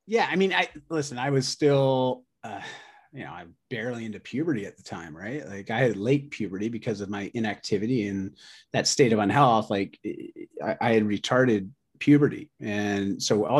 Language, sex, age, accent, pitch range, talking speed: English, male, 30-49, American, 110-145 Hz, 180 wpm